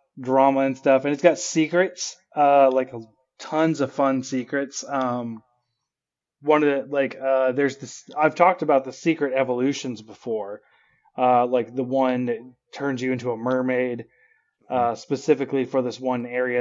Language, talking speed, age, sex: English, 160 wpm, 20-39, male